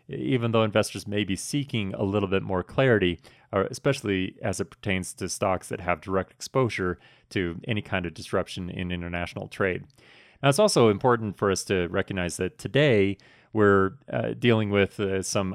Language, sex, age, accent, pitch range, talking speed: English, male, 30-49, American, 95-115 Hz, 175 wpm